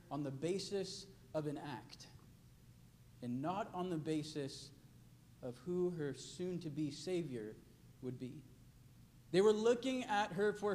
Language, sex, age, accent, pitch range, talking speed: English, male, 40-59, American, 150-210 Hz, 135 wpm